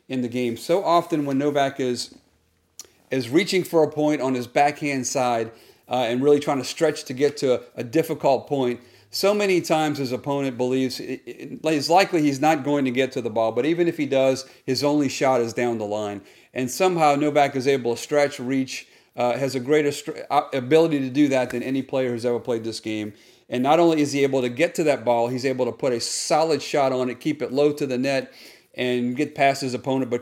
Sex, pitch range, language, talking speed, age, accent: male, 125-150 Hz, English, 225 wpm, 40-59, American